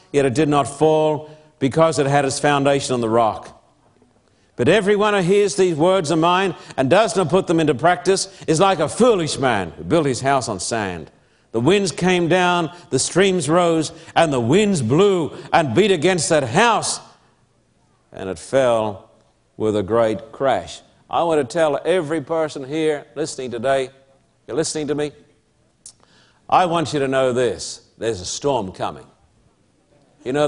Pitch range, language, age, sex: 140-190 Hz, English, 60-79, male